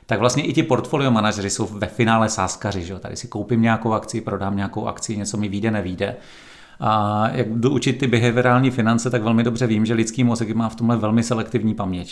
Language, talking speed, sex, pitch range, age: Czech, 210 wpm, male, 110-125 Hz, 40-59